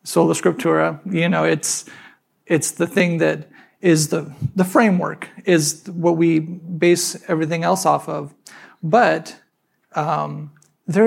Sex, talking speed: male, 135 wpm